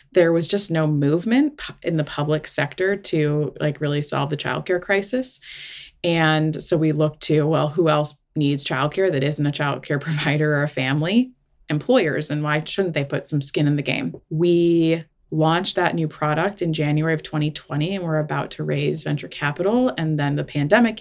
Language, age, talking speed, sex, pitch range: English, 20-39, 185 wpm, female, 145-165 Hz